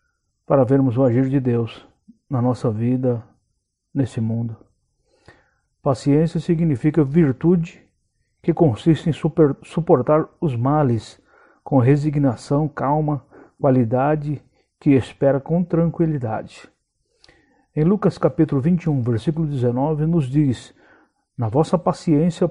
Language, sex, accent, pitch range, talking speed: Portuguese, male, Brazilian, 125-165 Hz, 105 wpm